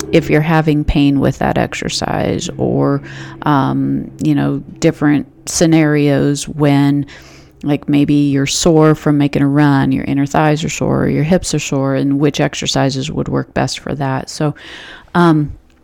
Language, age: English, 30-49